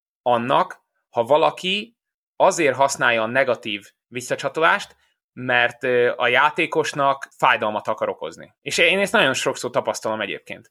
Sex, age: male, 20-39